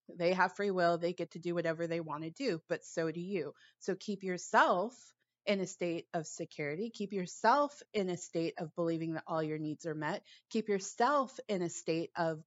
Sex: female